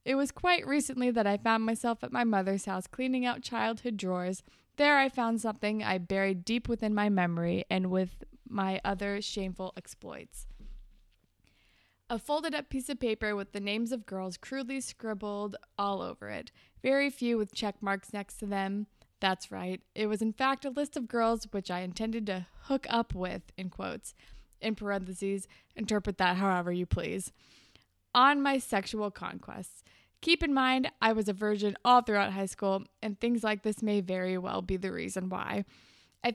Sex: female